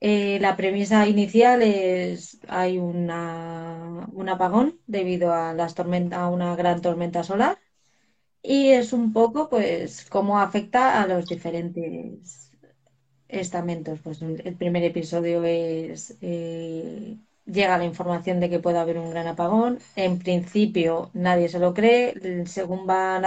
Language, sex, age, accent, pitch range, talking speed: Spanish, female, 20-39, Spanish, 175-210 Hz, 135 wpm